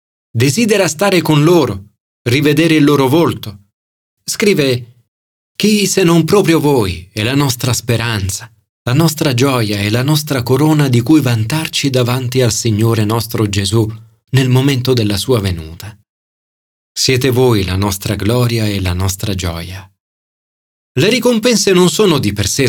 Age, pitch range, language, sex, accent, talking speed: 40-59, 110-160 Hz, Italian, male, native, 145 wpm